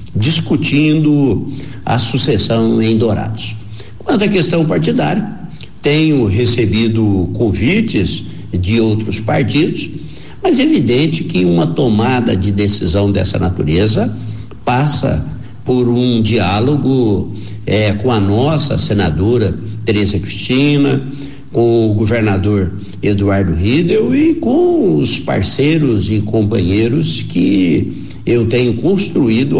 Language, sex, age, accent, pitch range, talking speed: Portuguese, male, 60-79, Brazilian, 105-140 Hz, 105 wpm